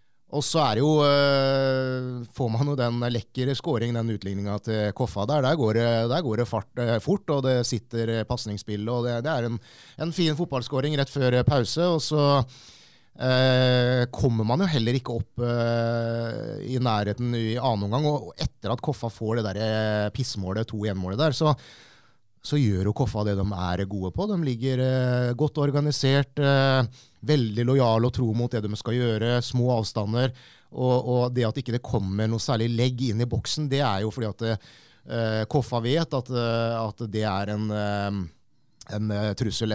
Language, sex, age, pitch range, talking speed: English, male, 30-49, 105-135 Hz, 190 wpm